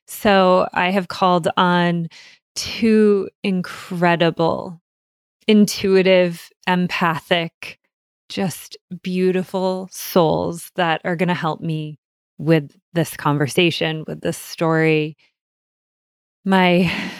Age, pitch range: 20-39, 170-200 Hz